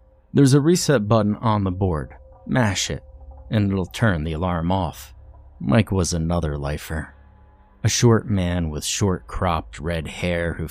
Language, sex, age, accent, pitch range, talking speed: English, male, 30-49, American, 80-110 Hz, 155 wpm